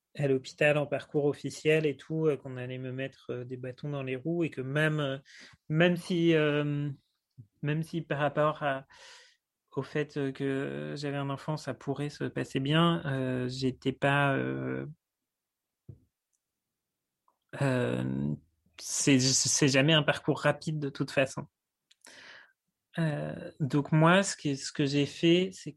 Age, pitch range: 30-49, 130-155 Hz